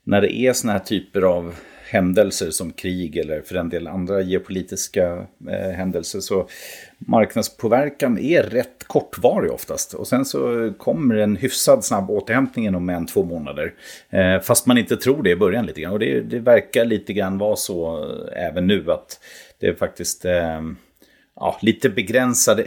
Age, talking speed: 30-49, 170 wpm